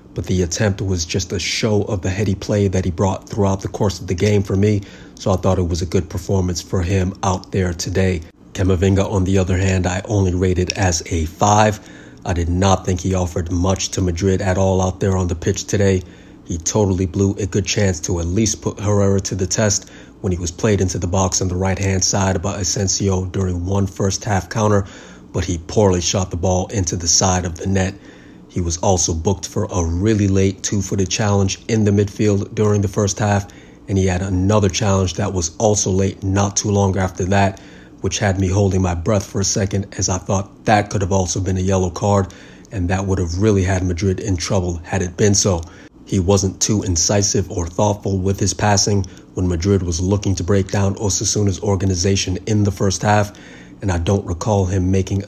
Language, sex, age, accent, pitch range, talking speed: English, male, 30-49, American, 95-100 Hz, 215 wpm